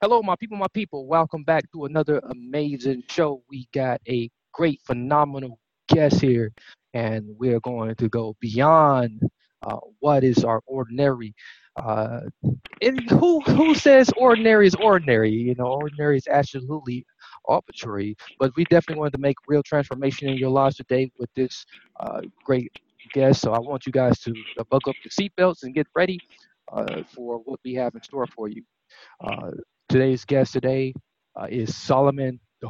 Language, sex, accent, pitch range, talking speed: English, male, American, 125-170 Hz, 165 wpm